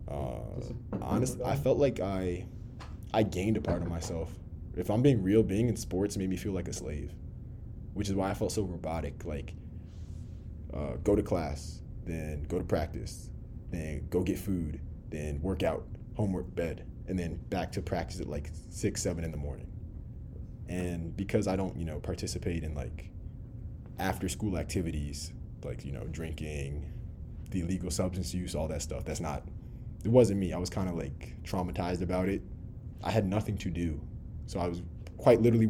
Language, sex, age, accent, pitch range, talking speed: English, male, 20-39, American, 85-105 Hz, 180 wpm